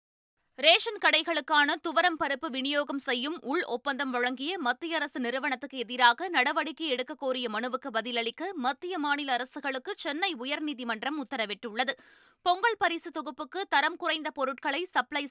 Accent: native